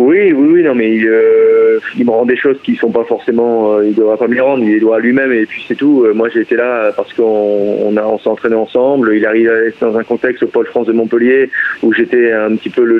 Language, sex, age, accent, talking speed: French, male, 30-49, French, 265 wpm